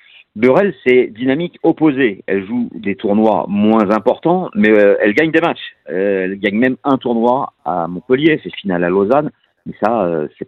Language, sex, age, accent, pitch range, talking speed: French, male, 50-69, French, 100-140 Hz, 185 wpm